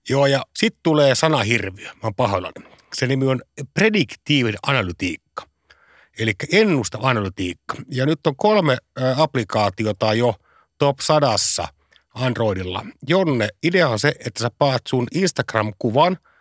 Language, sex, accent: Finnish, male, native